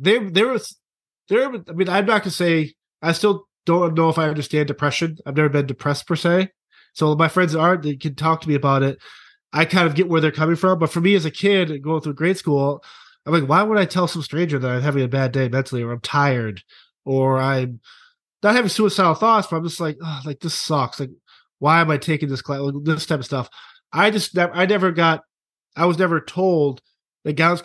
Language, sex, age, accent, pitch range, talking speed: English, male, 20-39, American, 145-175 Hz, 235 wpm